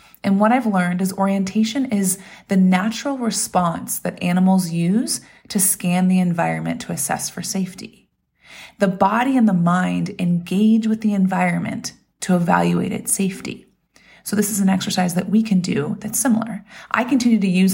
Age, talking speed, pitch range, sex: 30-49, 165 wpm, 175-220 Hz, female